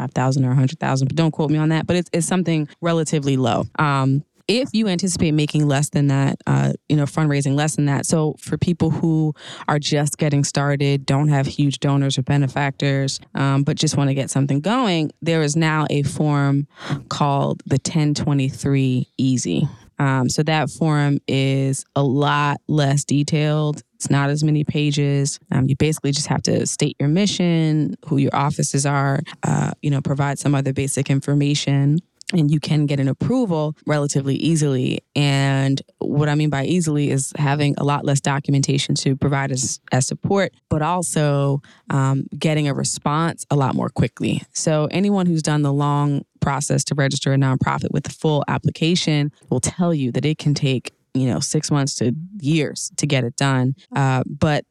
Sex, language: female, English